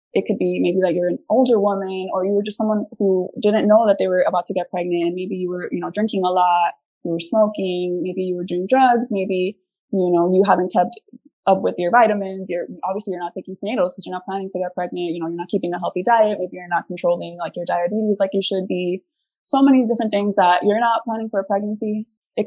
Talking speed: 255 wpm